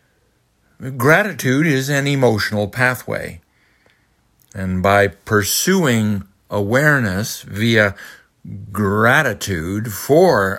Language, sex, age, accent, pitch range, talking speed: English, male, 60-79, American, 105-140 Hz, 70 wpm